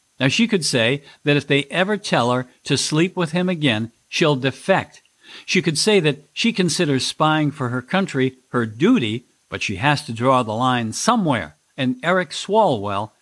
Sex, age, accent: male, 50-69, American